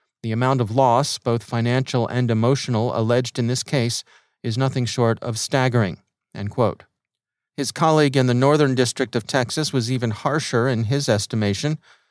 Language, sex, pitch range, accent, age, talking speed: English, male, 115-135 Hz, American, 40-59, 165 wpm